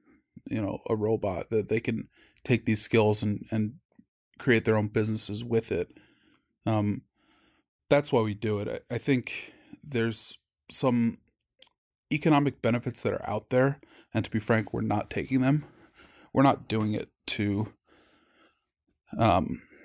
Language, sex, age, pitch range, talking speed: English, male, 20-39, 105-120 Hz, 150 wpm